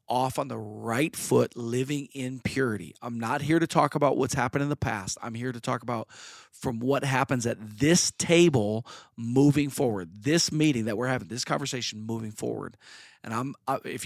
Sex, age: male, 40-59